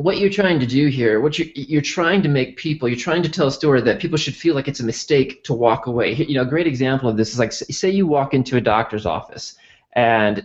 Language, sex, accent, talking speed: English, male, American, 270 wpm